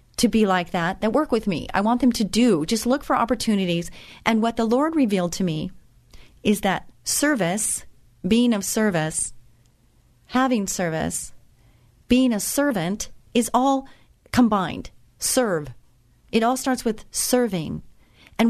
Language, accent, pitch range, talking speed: English, American, 185-245 Hz, 145 wpm